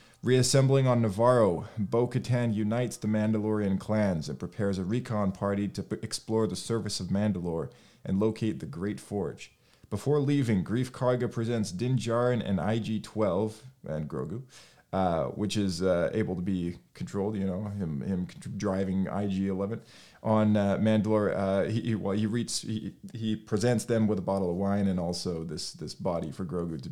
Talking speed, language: 170 wpm, English